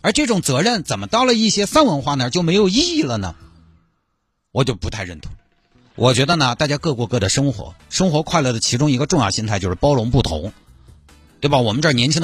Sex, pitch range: male, 95-145 Hz